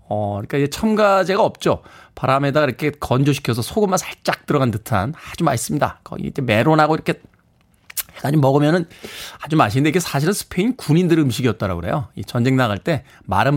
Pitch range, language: 125-195 Hz, Korean